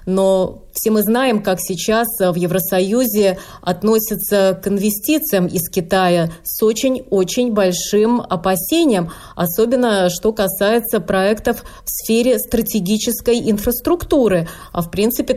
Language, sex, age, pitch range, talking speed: Russian, female, 20-39, 180-220 Hz, 110 wpm